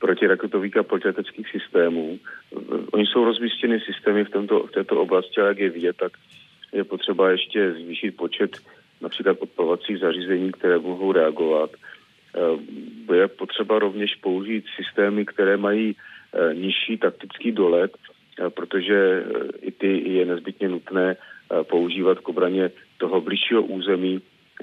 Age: 40-59